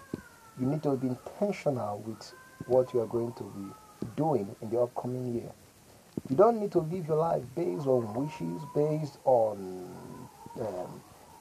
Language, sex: English, male